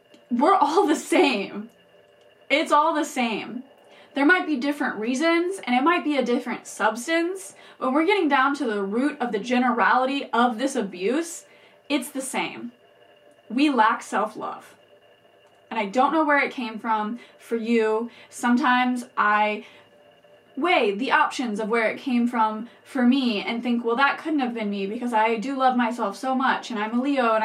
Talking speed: 175 wpm